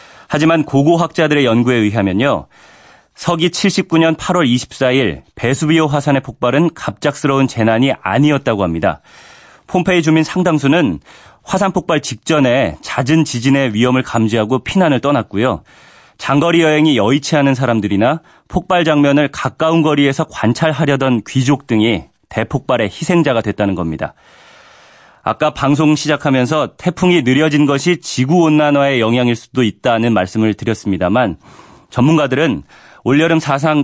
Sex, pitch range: male, 115-155 Hz